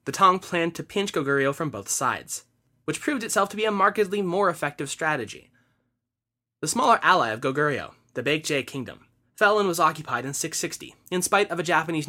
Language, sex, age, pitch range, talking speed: English, male, 20-39, 125-180 Hz, 190 wpm